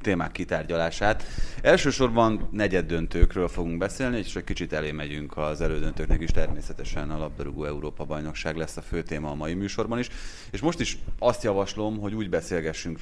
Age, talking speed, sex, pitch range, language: 30-49, 155 wpm, male, 75-95 Hz, Hungarian